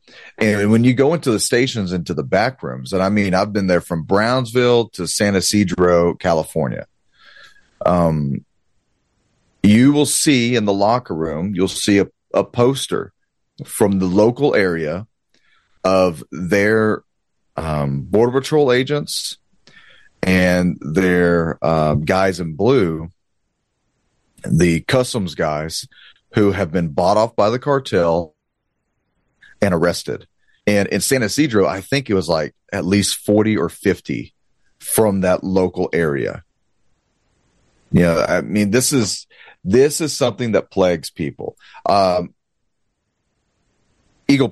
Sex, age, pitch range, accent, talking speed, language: male, 30-49, 85-110 Hz, American, 130 wpm, English